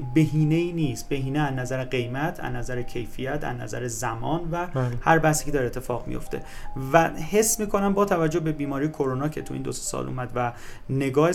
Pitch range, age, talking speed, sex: 130-170 Hz, 30-49, 190 wpm, male